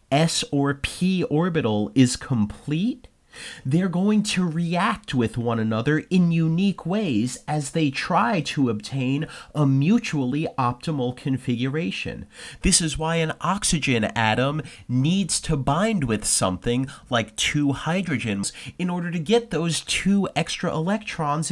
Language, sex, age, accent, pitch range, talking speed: English, male, 30-49, American, 125-170 Hz, 130 wpm